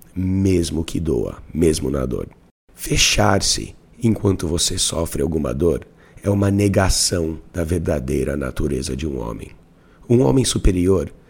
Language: Portuguese